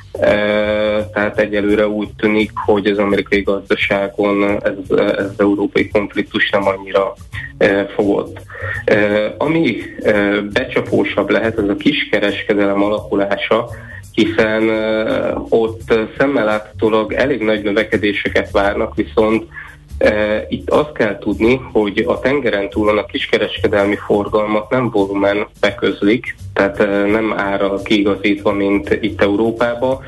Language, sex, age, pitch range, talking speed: Hungarian, male, 20-39, 100-110 Hz, 120 wpm